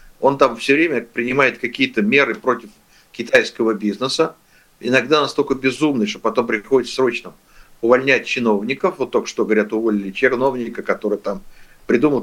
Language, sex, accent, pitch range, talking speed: Russian, male, native, 120-175 Hz, 135 wpm